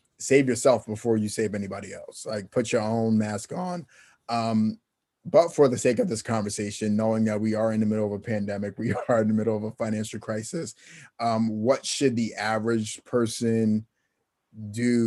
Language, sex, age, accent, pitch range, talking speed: English, male, 30-49, American, 110-120 Hz, 185 wpm